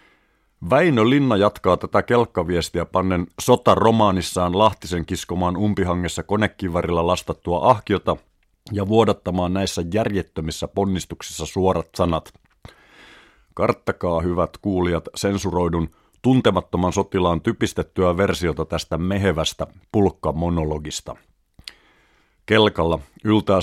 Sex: male